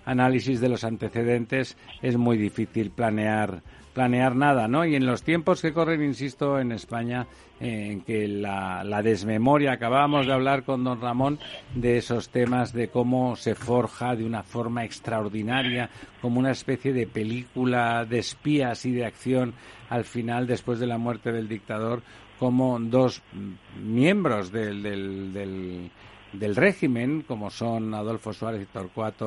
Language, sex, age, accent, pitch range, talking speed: Spanish, male, 60-79, Spanish, 105-125 Hz, 150 wpm